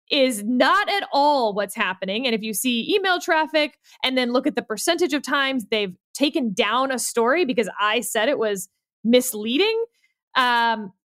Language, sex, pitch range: English, female, 225-315 Hz